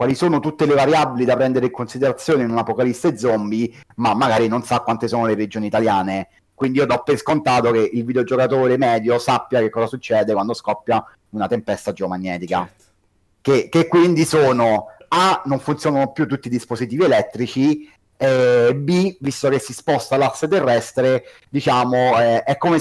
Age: 30-49